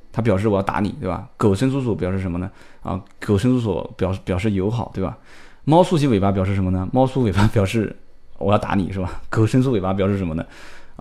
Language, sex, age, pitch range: Chinese, male, 20-39, 100-145 Hz